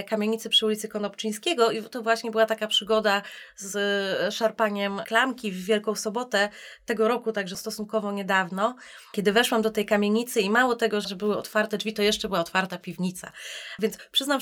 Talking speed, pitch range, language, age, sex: 165 wpm, 200-230 Hz, Polish, 20-39, female